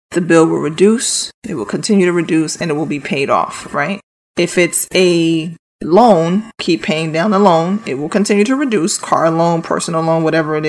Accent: American